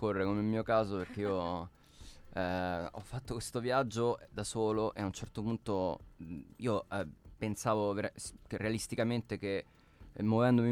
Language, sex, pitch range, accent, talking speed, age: Italian, male, 95-110 Hz, native, 145 wpm, 20-39